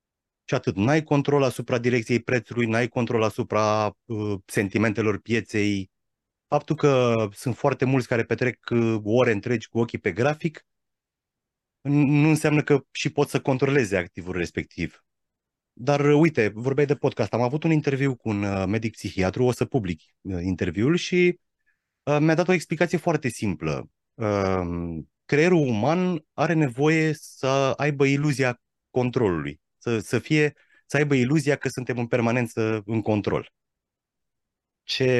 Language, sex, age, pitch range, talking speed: Romanian, male, 30-49, 110-145 Hz, 145 wpm